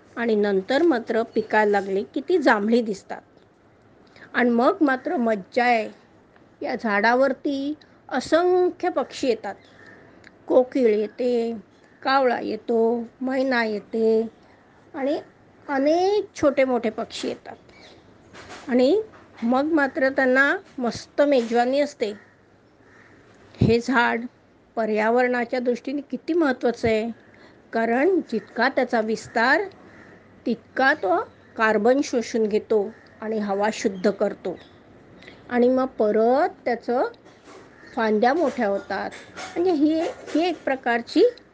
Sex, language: female, Marathi